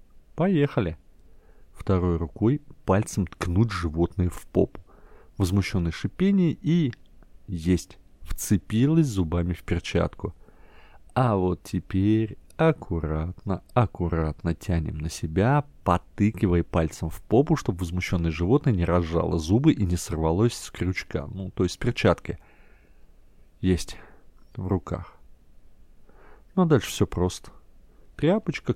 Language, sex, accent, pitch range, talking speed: Russian, male, native, 85-115 Hz, 110 wpm